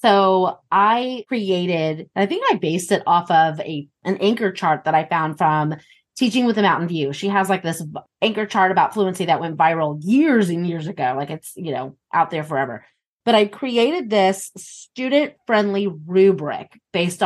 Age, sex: 30-49, female